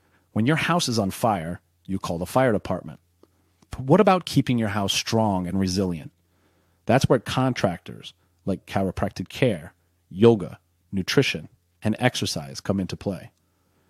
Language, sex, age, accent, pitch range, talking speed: English, male, 30-49, American, 90-115 Hz, 145 wpm